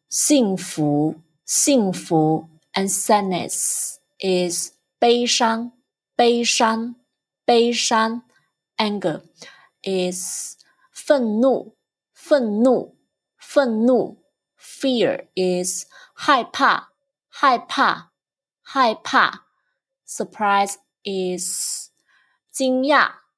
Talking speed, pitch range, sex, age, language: 35 wpm, 195-250 Hz, female, 20-39, English